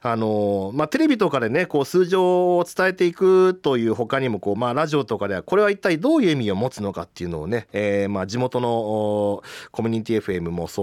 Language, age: Japanese, 40-59